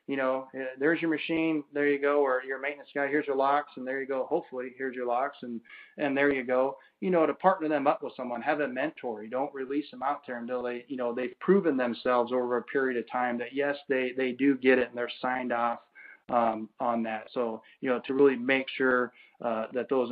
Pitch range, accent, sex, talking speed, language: 120-140 Hz, American, male, 240 wpm, English